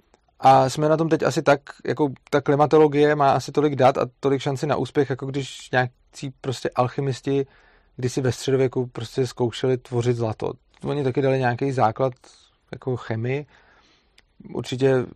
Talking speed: 155 wpm